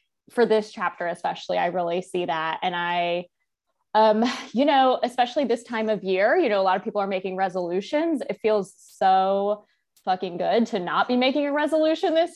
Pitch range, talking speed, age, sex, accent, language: 190-245 Hz, 190 wpm, 20-39, female, American, English